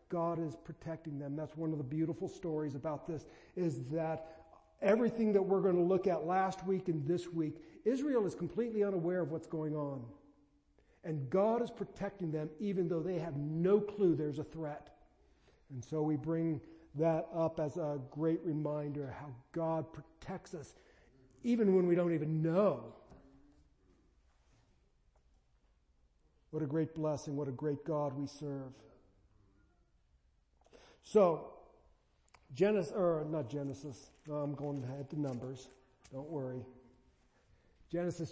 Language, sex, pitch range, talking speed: English, male, 140-165 Hz, 145 wpm